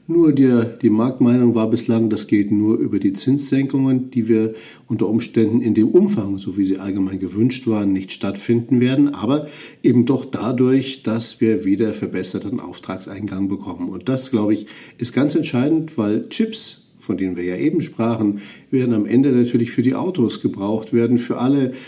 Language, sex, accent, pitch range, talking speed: German, male, German, 100-120 Hz, 175 wpm